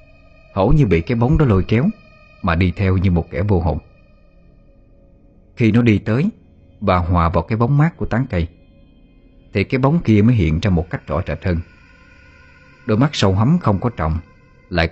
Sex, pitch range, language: male, 85-120 Hz, Vietnamese